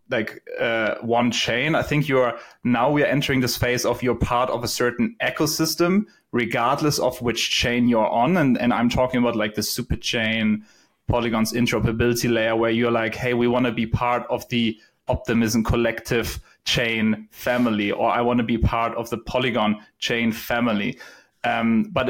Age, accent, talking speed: 30-49, German, 180 wpm